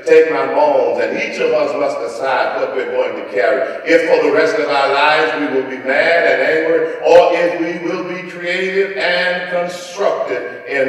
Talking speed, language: 200 wpm, English